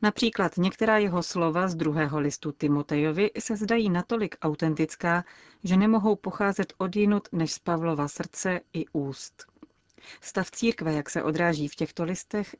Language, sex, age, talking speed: Czech, female, 40-59, 150 wpm